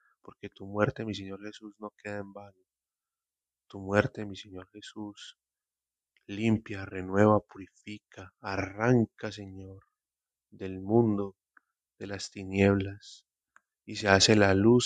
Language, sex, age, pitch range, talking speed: Spanish, male, 20-39, 95-105 Hz, 120 wpm